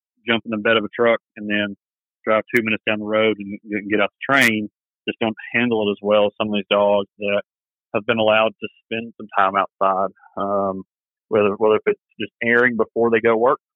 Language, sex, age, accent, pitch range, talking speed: English, male, 30-49, American, 105-120 Hz, 220 wpm